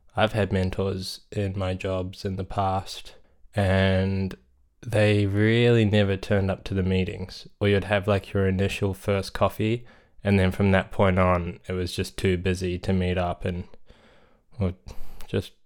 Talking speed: 160 wpm